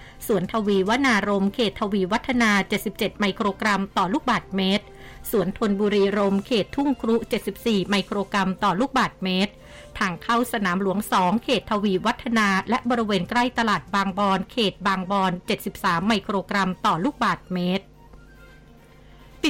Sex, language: female, Thai